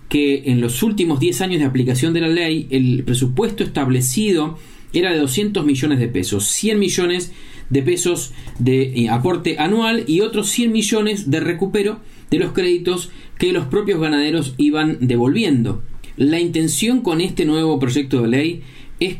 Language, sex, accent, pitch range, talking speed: Spanish, male, Argentinian, 130-175 Hz, 160 wpm